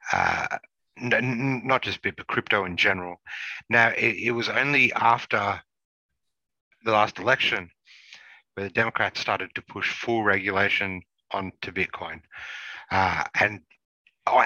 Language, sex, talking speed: English, male, 135 wpm